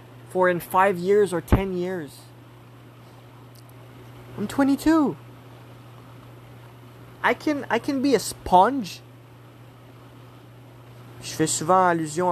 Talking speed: 95 wpm